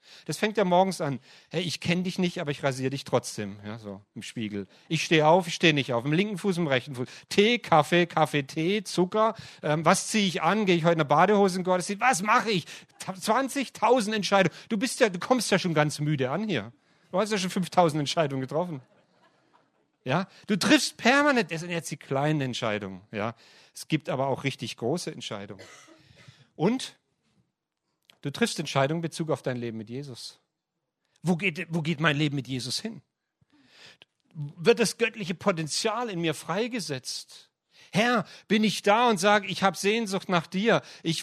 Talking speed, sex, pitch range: 190 wpm, male, 145-200 Hz